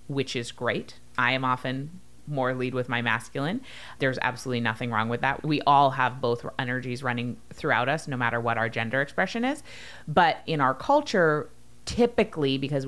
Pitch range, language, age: 125-170 Hz, English, 30-49